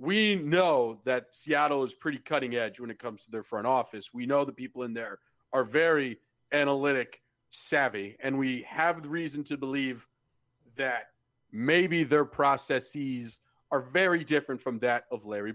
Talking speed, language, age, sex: 165 wpm, English, 40-59, male